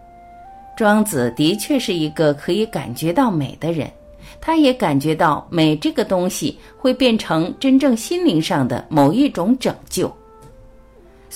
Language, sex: Chinese, female